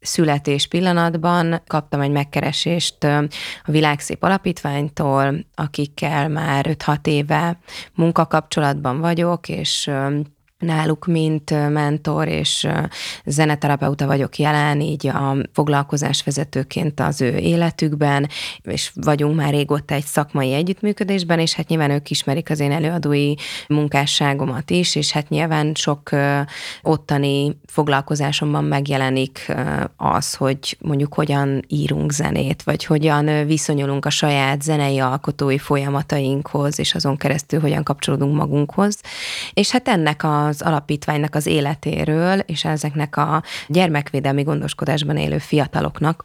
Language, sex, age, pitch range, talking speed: Hungarian, female, 20-39, 140-155 Hz, 115 wpm